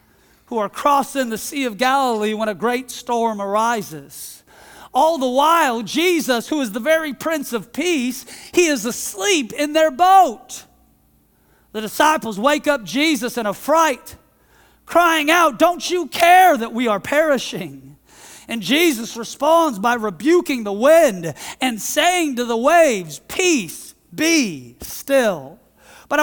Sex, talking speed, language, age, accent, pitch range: male, 140 wpm, English, 40-59, American, 235-335 Hz